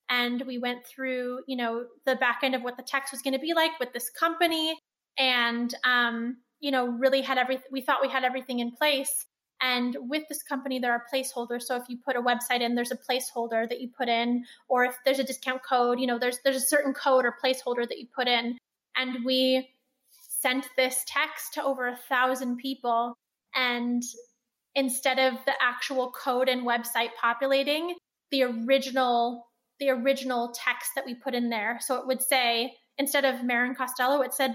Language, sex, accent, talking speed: English, female, American, 200 wpm